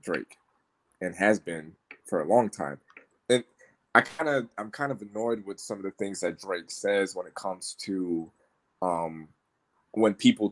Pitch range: 90-110 Hz